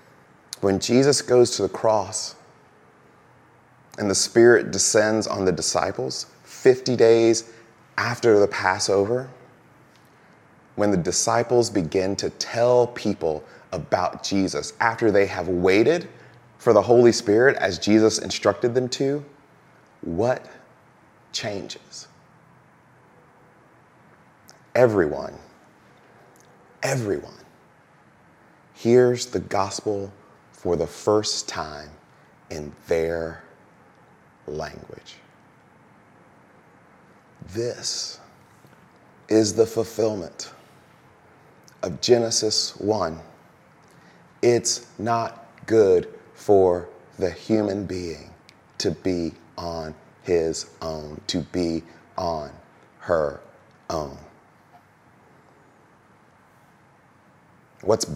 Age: 30-49